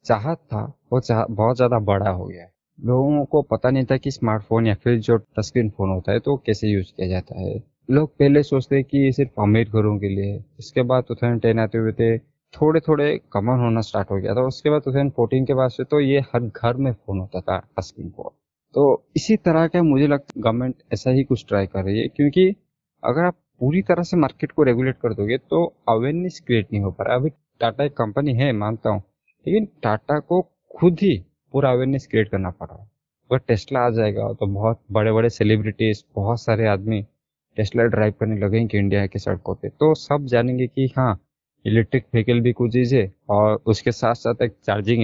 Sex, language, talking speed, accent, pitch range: male, Hindi, 215 wpm, native, 110-140 Hz